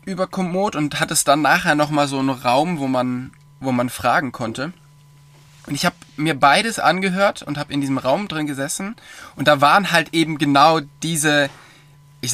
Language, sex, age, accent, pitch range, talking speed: German, male, 20-39, German, 135-150 Hz, 185 wpm